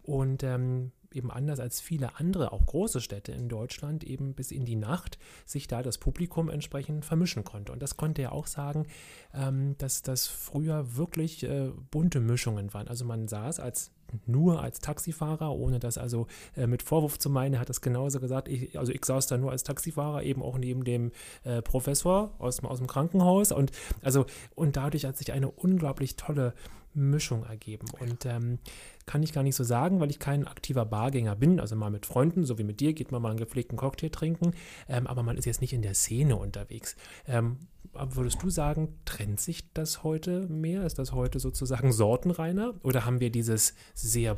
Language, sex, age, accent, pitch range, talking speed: German, male, 30-49, German, 120-150 Hz, 190 wpm